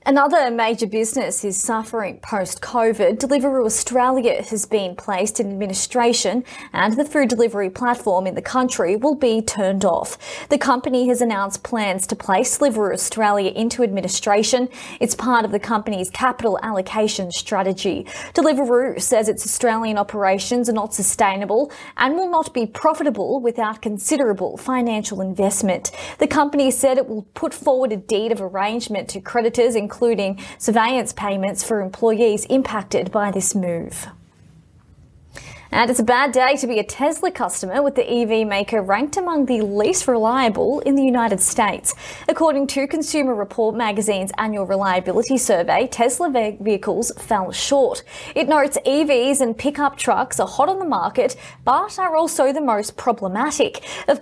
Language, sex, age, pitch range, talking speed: English, female, 20-39, 205-265 Hz, 150 wpm